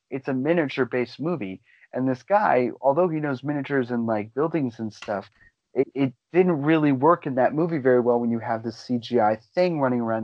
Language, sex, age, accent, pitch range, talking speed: English, male, 30-49, American, 120-140 Hz, 200 wpm